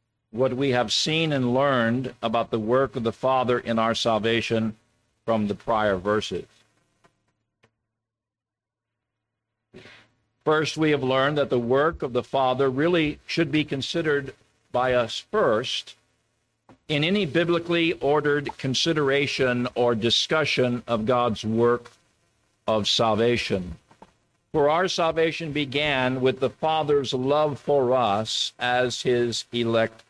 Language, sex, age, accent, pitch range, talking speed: English, male, 50-69, American, 115-145 Hz, 120 wpm